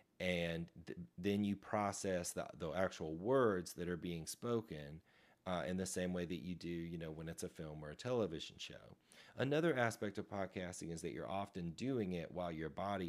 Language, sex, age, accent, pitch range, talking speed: English, male, 30-49, American, 80-95 Hz, 200 wpm